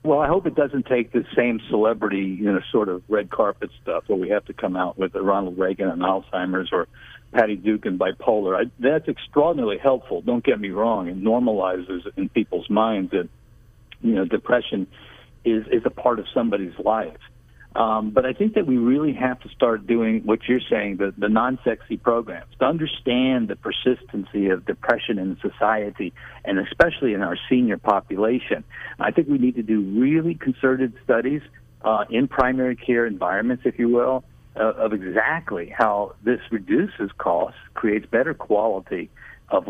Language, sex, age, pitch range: English, male, 60-79, 105-130 Hz